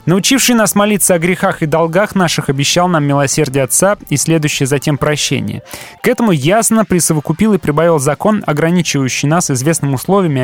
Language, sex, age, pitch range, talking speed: Russian, male, 20-39, 135-180 Hz, 160 wpm